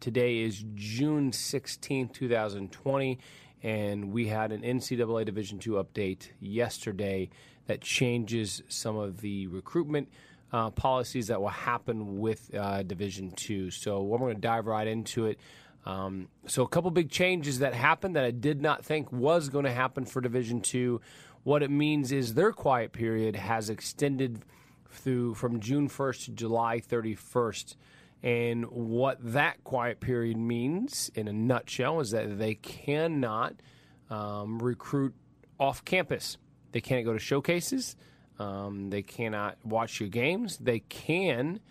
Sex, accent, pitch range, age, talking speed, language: male, American, 110-135 Hz, 30-49, 150 wpm, English